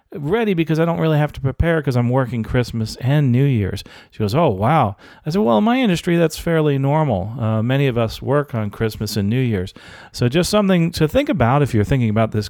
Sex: male